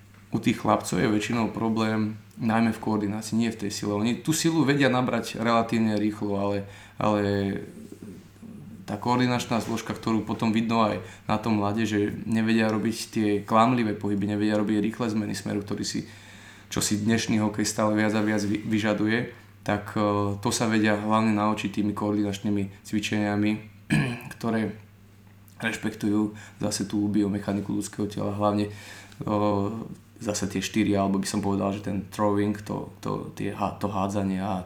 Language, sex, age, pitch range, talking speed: Slovak, male, 20-39, 105-110 Hz, 150 wpm